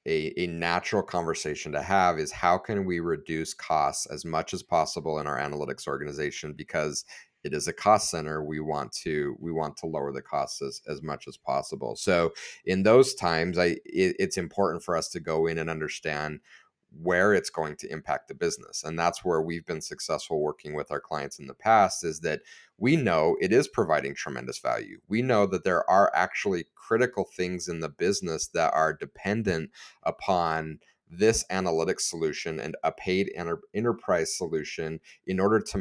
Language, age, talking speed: English, 30-49, 185 wpm